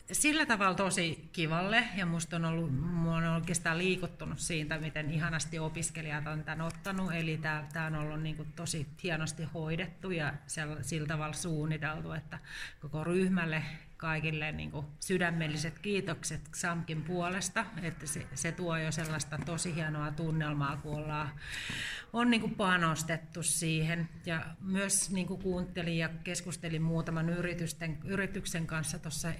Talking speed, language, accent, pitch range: 130 wpm, Finnish, native, 155-175 Hz